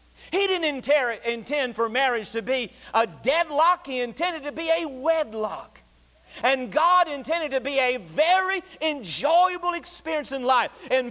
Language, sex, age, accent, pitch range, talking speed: English, male, 50-69, American, 180-270 Hz, 145 wpm